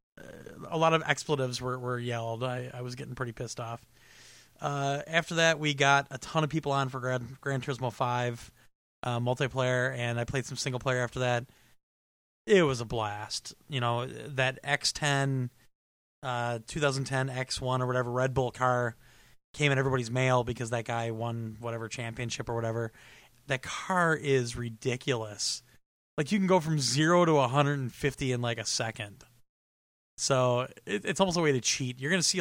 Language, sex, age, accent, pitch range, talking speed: English, male, 30-49, American, 120-140 Hz, 170 wpm